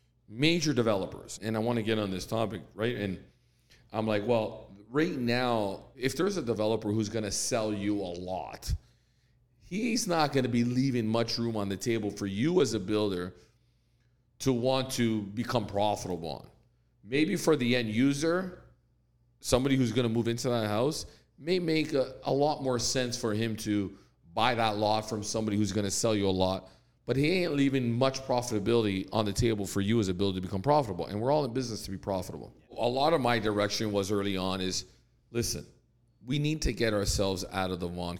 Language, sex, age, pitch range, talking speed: English, male, 40-59, 95-120 Hz, 200 wpm